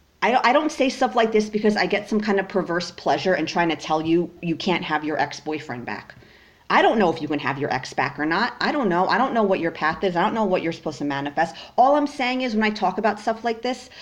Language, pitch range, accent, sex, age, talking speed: English, 165-245 Hz, American, female, 40-59, 285 wpm